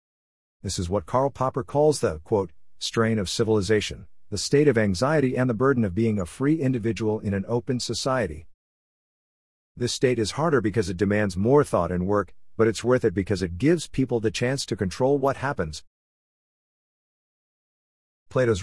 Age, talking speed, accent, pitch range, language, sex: 50-69, 170 wpm, American, 90-120 Hz, English, male